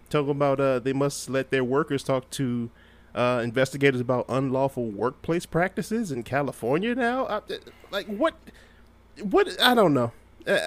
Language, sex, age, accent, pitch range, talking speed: English, male, 20-39, American, 120-155 Hz, 150 wpm